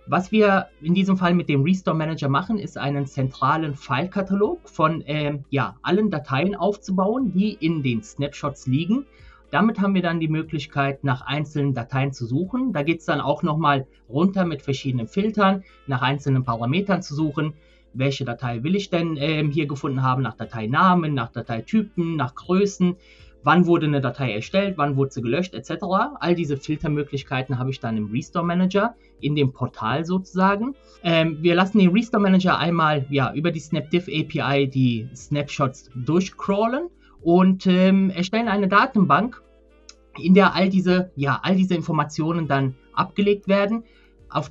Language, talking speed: German, 160 wpm